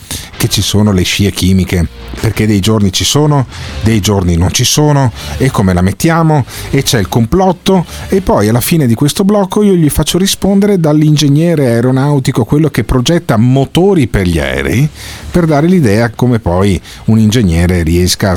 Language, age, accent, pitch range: Italian, 40-59, native, 100-145 Hz